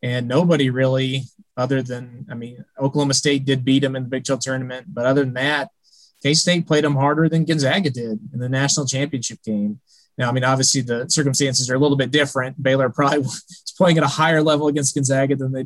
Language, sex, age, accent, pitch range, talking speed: English, male, 20-39, American, 130-145 Hz, 220 wpm